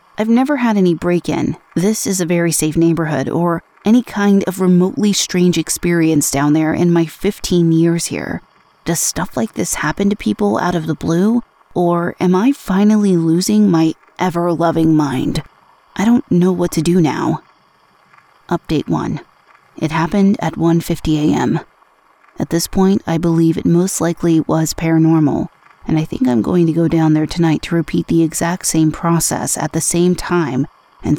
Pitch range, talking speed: 160-180 Hz, 170 wpm